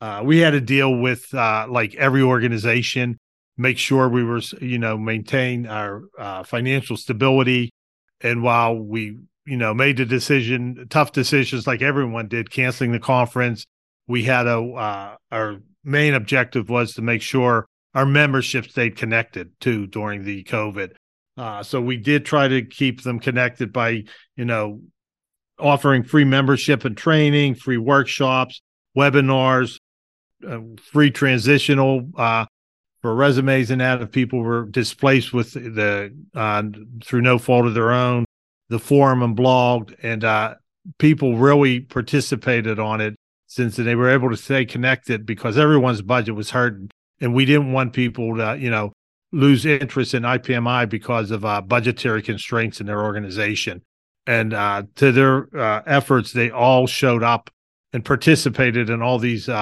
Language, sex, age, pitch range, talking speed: English, male, 40-59, 110-135 Hz, 155 wpm